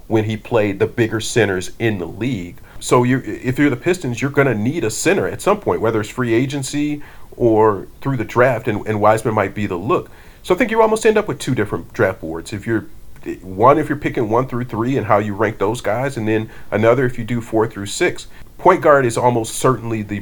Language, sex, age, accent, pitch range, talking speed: English, male, 40-59, American, 100-120 Hz, 235 wpm